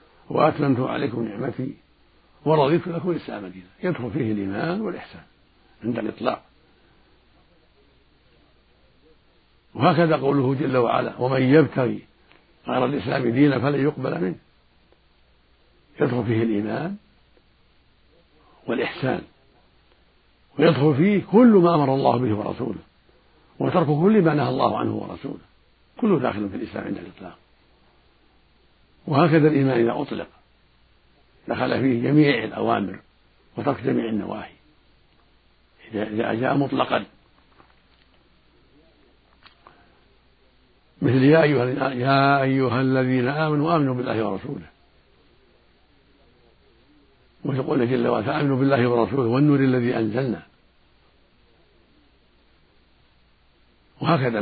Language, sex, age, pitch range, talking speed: Arabic, male, 60-79, 100-150 Hz, 90 wpm